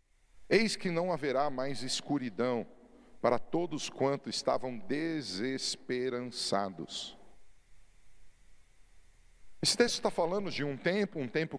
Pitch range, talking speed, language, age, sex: 130-165 Hz, 105 wpm, Portuguese, 40-59, male